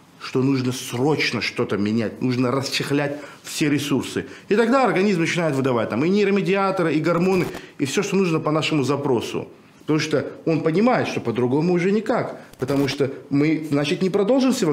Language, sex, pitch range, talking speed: Russian, male, 130-185 Hz, 165 wpm